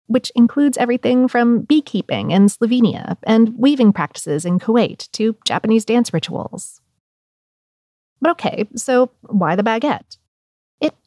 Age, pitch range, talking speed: 30-49, 200-260 Hz, 125 wpm